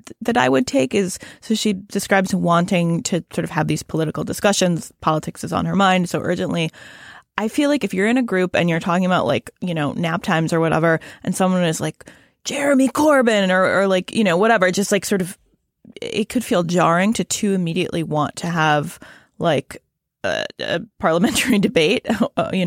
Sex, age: female, 20-39